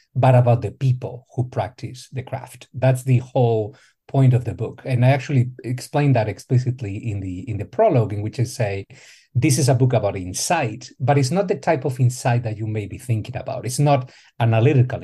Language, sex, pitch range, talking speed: English, male, 120-140 Hz, 210 wpm